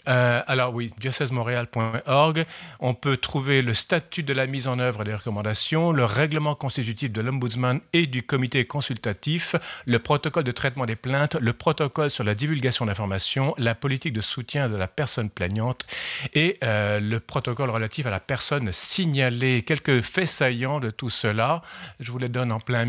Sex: male